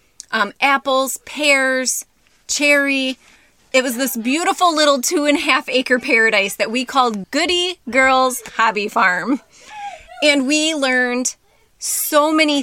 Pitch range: 235-290 Hz